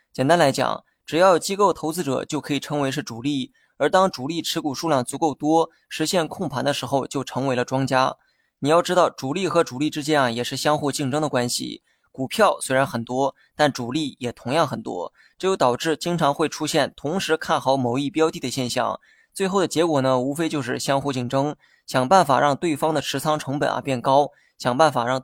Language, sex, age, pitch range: Chinese, male, 20-39, 130-160 Hz